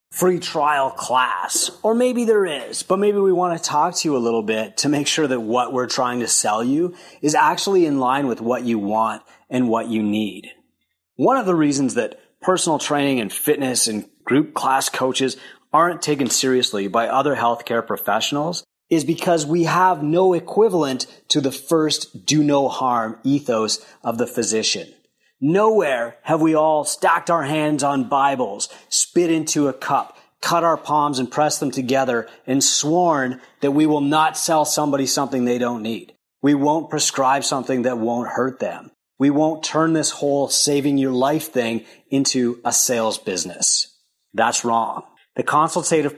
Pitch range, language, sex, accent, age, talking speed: 125-160 Hz, English, male, American, 30-49, 175 wpm